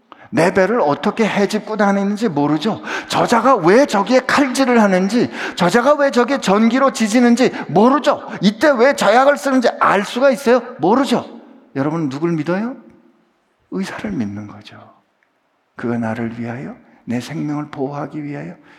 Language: Korean